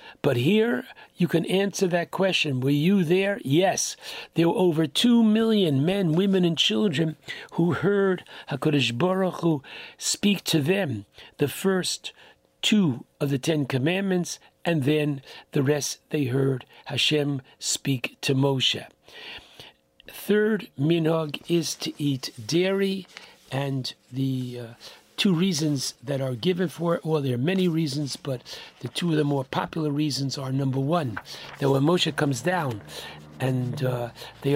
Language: English